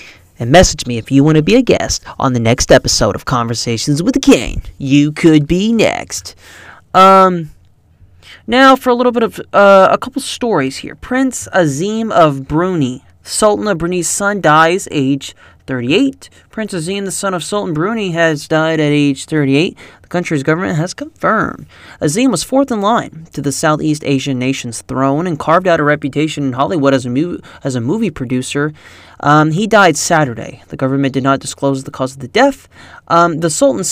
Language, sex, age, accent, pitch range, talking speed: English, male, 20-39, American, 135-195 Hz, 185 wpm